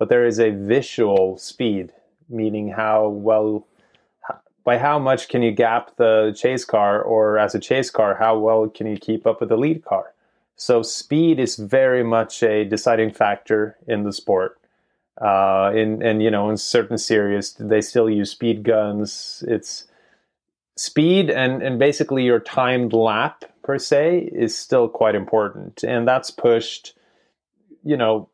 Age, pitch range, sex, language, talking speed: 30-49, 105-120 Hz, male, English, 160 wpm